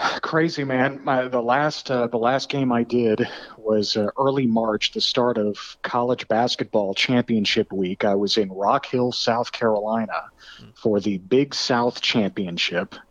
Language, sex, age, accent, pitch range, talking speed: English, male, 40-59, American, 100-125 Hz, 150 wpm